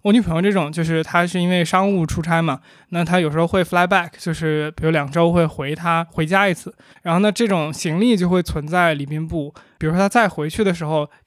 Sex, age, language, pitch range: male, 20-39, Chinese, 155-195 Hz